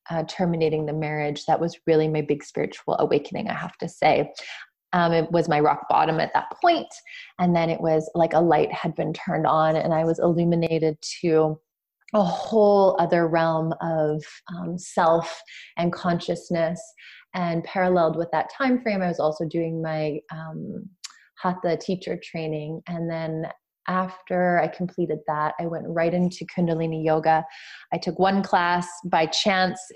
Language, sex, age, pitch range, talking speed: English, female, 20-39, 160-190 Hz, 165 wpm